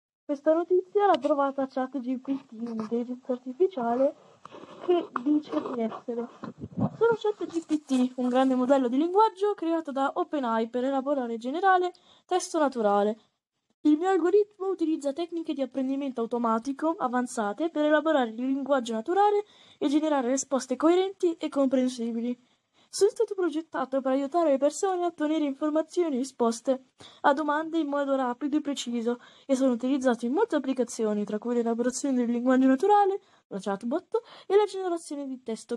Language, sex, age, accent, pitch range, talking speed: Italian, female, 20-39, native, 245-320 Hz, 145 wpm